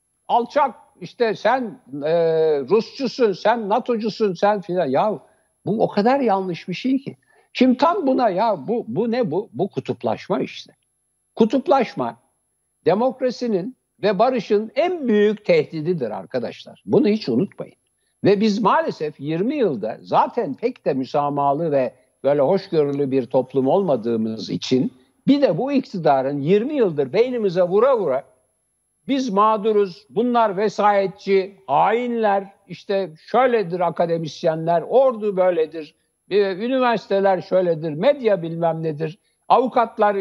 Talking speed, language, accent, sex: 120 wpm, Turkish, native, male